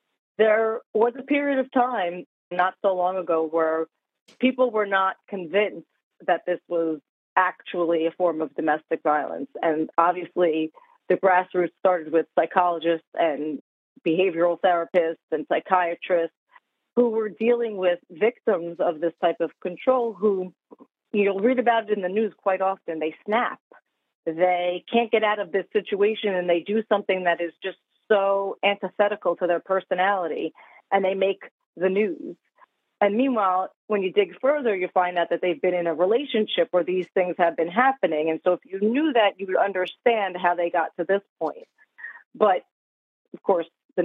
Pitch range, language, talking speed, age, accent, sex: 170-210 Hz, English, 165 wpm, 40-59, American, female